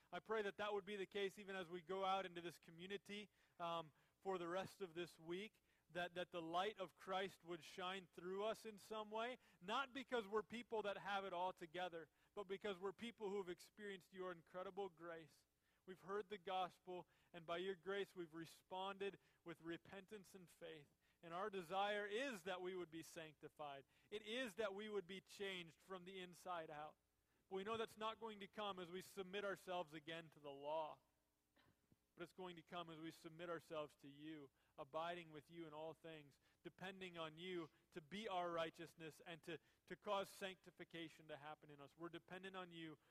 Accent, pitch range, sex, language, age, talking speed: American, 165-200 Hz, male, English, 30-49, 195 wpm